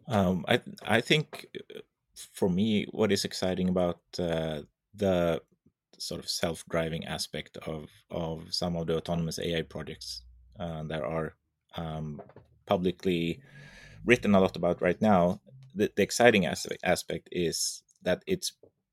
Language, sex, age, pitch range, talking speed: English, male, 30-49, 80-100 Hz, 140 wpm